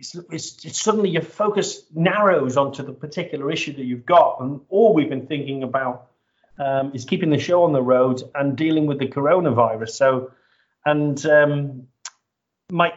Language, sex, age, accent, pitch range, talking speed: English, male, 40-59, British, 120-150 Hz, 170 wpm